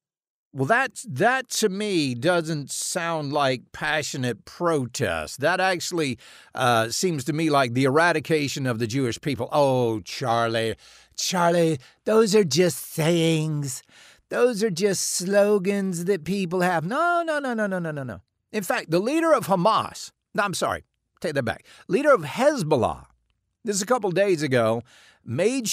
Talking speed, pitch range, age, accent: 155 wpm, 125-200 Hz, 50-69, American